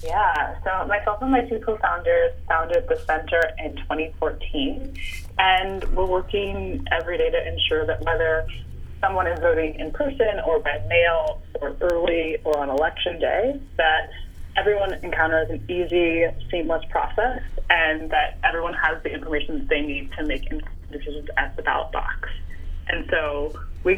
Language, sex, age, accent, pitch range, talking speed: English, female, 20-39, American, 145-205 Hz, 150 wpm